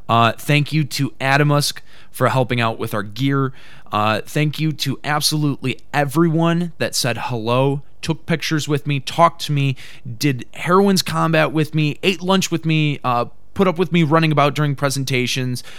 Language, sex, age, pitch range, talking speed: English, male, 20-39, 120-150 Hz, 170 wpm